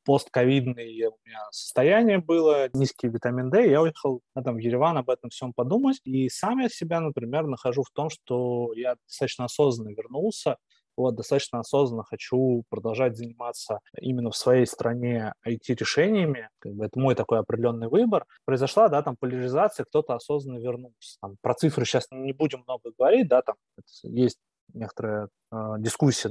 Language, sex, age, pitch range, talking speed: Russian, male, 20-39, 120-150 Hz, 155 wpm